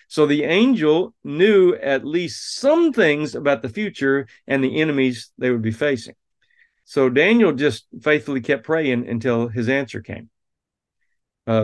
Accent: American